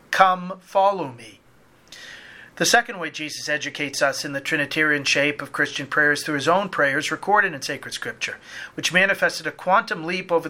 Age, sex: 40-59, male